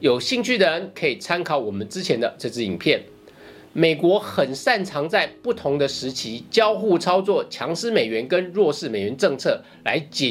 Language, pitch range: Chinese, 155-215 Hz